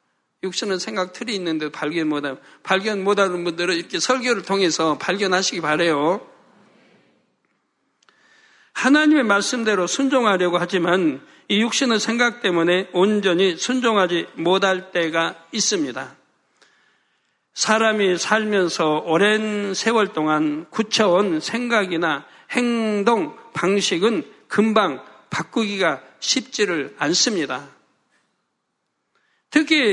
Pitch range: 185-245 Hz